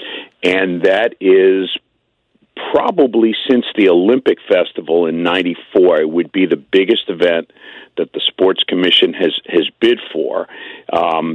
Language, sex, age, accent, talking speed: English, male, 50-69, American, 130 wpm